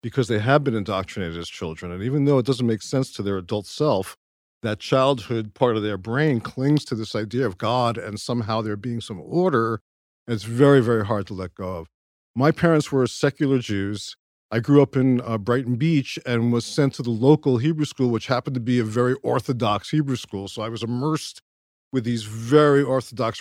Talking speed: 210 wpm